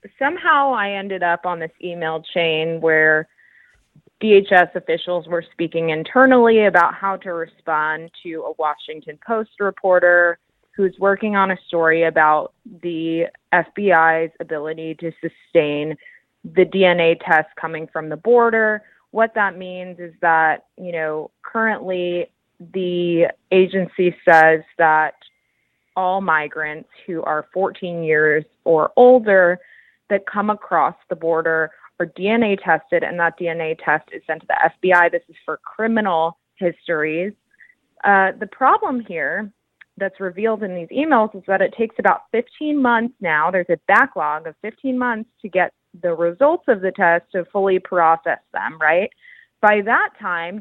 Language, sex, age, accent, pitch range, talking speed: English, female, 20-39, American, 165-205 Hz, 145 wpm